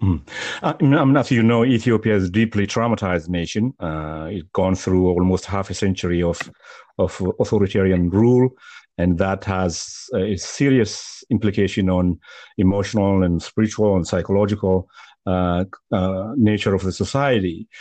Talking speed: 140 wpm